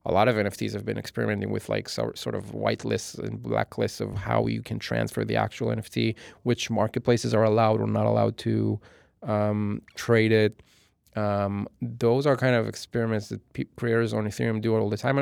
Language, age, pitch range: English, 30-49, 105-120 Hz